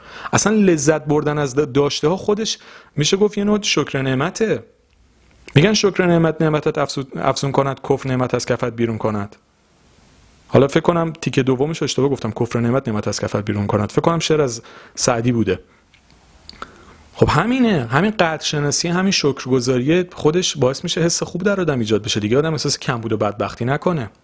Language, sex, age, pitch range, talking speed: Persian, male, 40-59, 115-155 Hz, 170 wpm